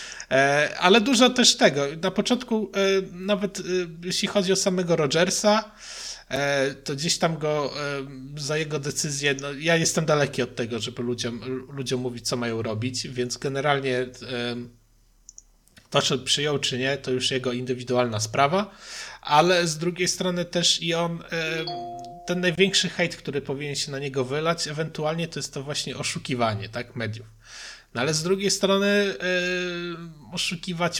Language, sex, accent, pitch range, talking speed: Polish, male, native, 125-170 Hz, 145 wpm